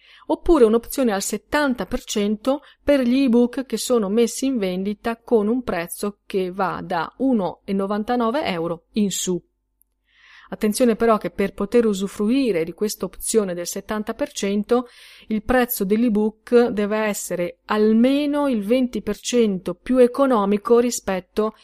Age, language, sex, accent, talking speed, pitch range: 30-49, Italian, female, native, 120 wpm, 180-230 Hz